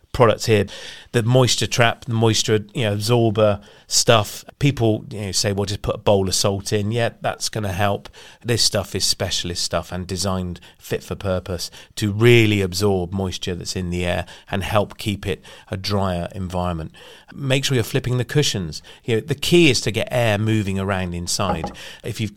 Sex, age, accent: male, 30-49, British